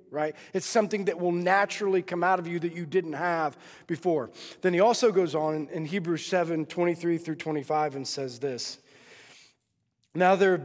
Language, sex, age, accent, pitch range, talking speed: English, male, 40-59, American, 155-190 Hz, 180 wpm